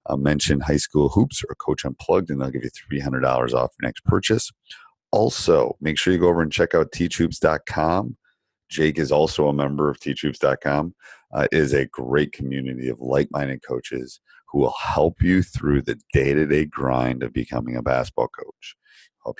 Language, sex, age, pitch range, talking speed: English, male, 40-59, 70-90 Hz, 175 wpm